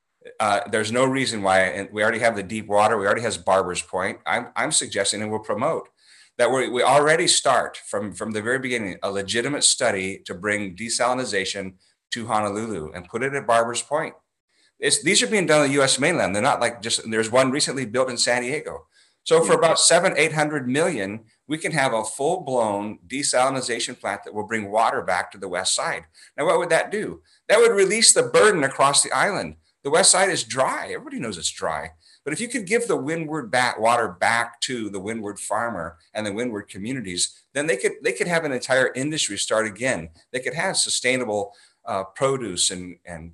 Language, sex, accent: English, male, American